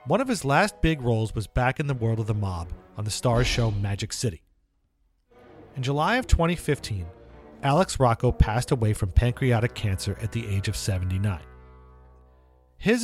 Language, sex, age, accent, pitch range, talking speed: English, male, 40-59, American, 100-150 Hz, 170 wpm